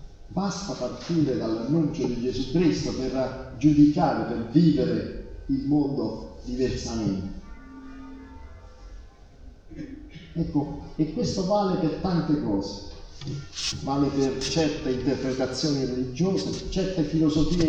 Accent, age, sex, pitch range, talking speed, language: native, 50-69, male, 100-150 Hz, 90 wpm, Italian